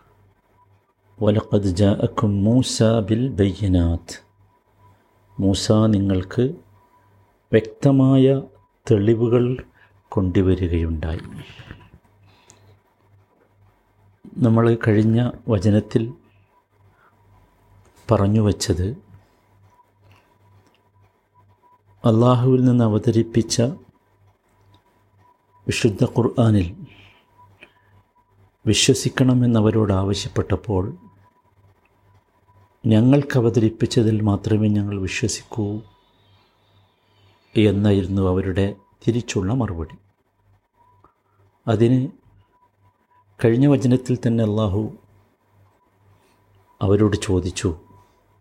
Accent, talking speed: native, 45 wpm